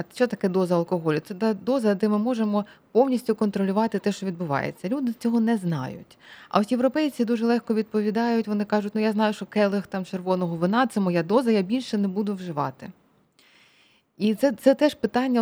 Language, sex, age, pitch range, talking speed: Ukrainian, female, 20-39, 180-230 Hz, 185 wpm